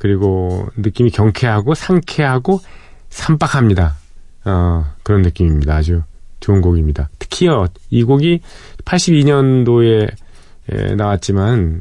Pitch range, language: 85-115 Hz, Korean